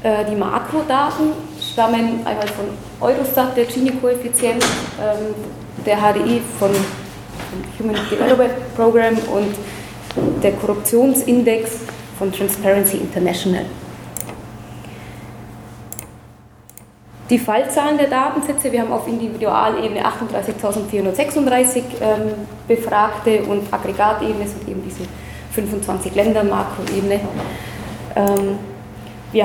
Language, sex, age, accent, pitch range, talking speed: German, female, 20-39, German, 185-230 Hz, 85 wpm